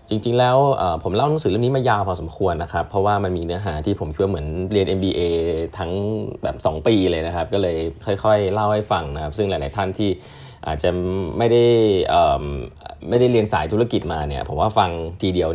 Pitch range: 85-110 Hz